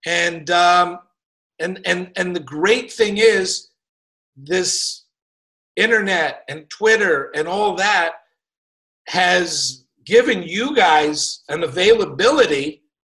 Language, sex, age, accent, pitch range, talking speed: English, male, 50-69, American, 150-195 Hz, 100 wpm